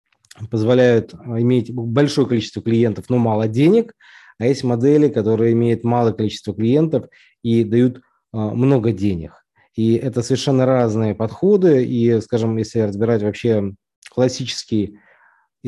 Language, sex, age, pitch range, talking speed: Russian, male, 20-39, 110-130 Hz, 120 wpm